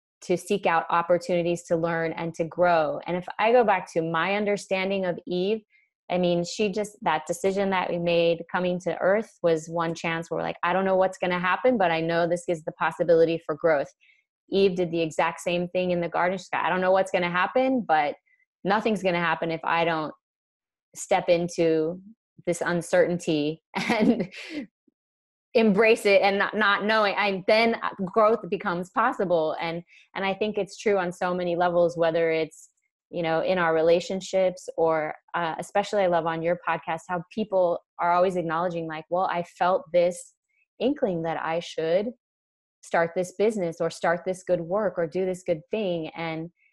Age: 20-39